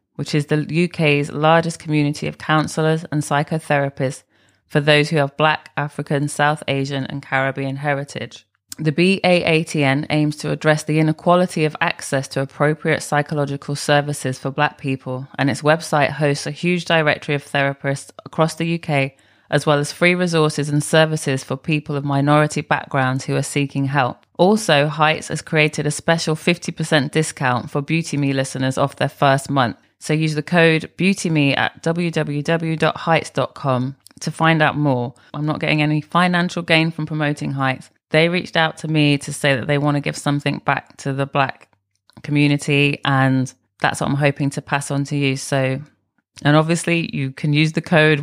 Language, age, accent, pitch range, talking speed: English, 20-39, British, 140-160 Hz, 170 wpm